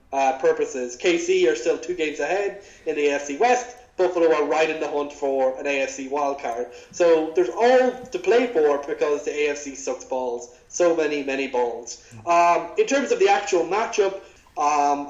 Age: 20-39